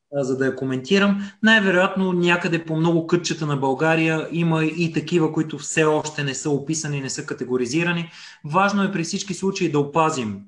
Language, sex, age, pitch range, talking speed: Bulgarian, male, 20-39, 135-175 Hz, 170 wpm